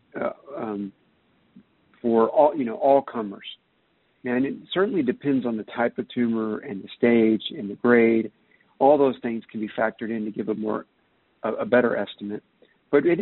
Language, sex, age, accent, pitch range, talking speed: English, male, 50-69, American, 110-140 Hz, 180 wpm